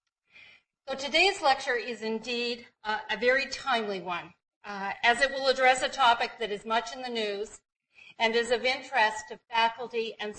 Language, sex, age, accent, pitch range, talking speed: English, female, 50-69, American, 210-265 Hz, 160 wpm